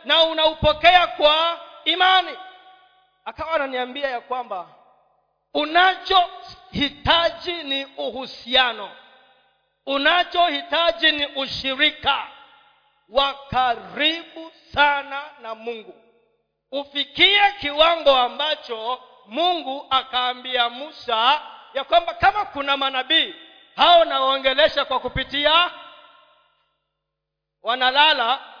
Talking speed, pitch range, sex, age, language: 75 wpm, 250-330 Hz, male, 40-59, Swahili